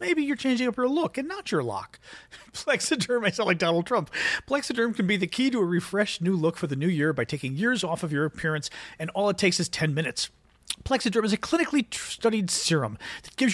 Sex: male